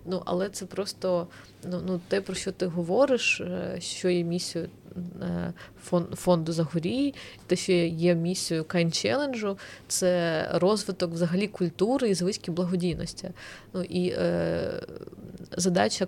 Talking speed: 100 wpm